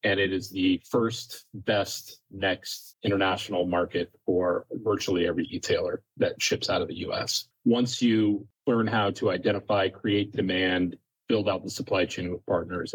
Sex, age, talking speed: male, 30-49, 160 wpm